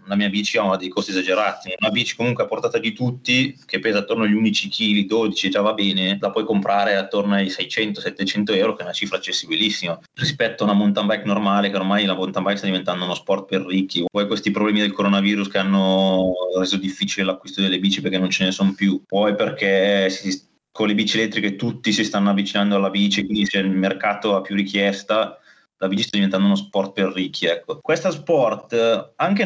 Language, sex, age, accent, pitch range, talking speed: Italian, male, 20-39, native, 100-135 Hz, 210 wpm